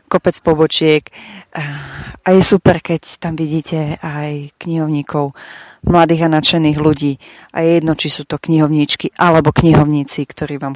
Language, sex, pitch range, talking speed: English, female, 145-170 Hz, 140 wpm